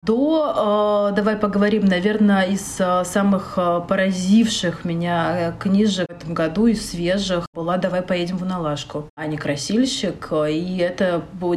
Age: 30-49